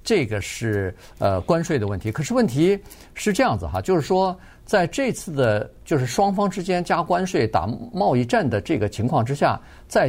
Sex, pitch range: male, 110-175 Hz